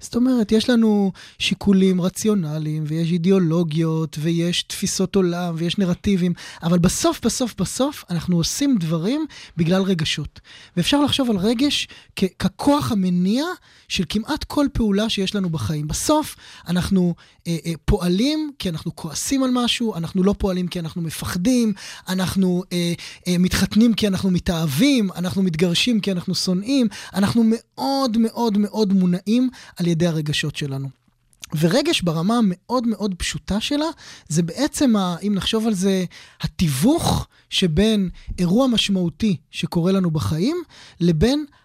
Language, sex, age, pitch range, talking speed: Hebrew, male, 20-39, 175-230 Hz, 135 wpm